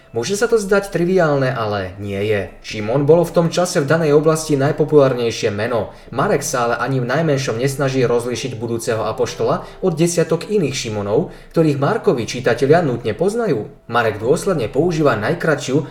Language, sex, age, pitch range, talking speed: Slovak, male, 20-39, 115-165 Hz, 155 wpm